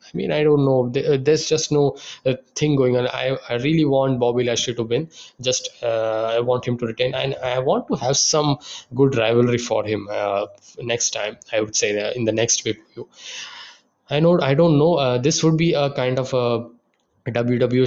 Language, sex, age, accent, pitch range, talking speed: English, male, 10-29, Indian, 120-140 Hz, 210 wpm